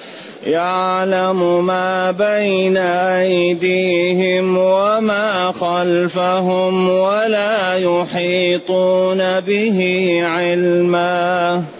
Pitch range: 175-185 Hz